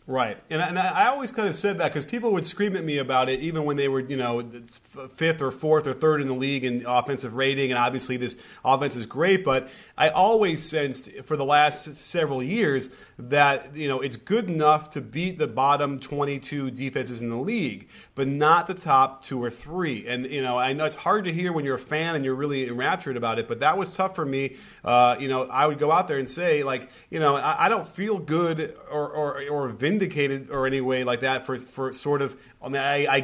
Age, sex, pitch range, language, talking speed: 30-49, male, 130-160 Hz, English, 240 wpm